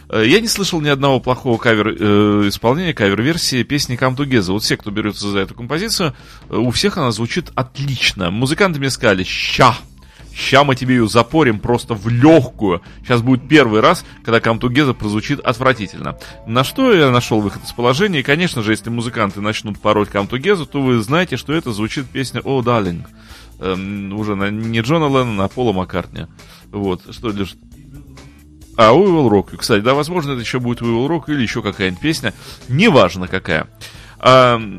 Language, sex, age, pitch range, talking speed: Russian, male, 30-49, 105-135 Hz, 170 wpm